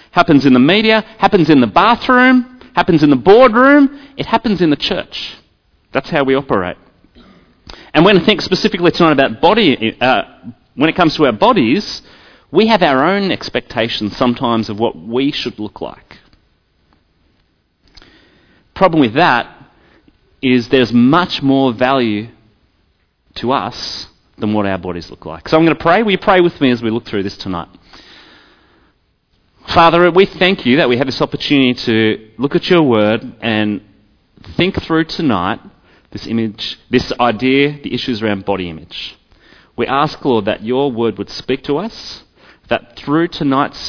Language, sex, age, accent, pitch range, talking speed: English, male, 30-49, Australian, 100-170 Hz, 165 wpm